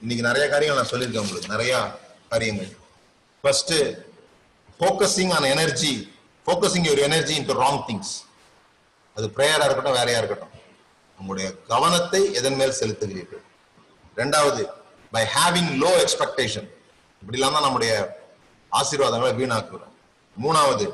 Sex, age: male, 30-49